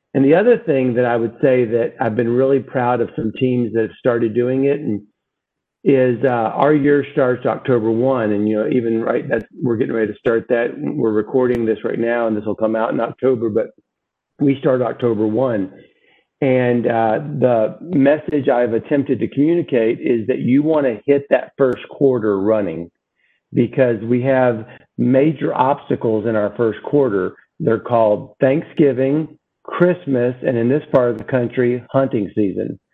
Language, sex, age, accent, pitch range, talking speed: English, male, 50-69, American, 115-145 Hz, 180 wpm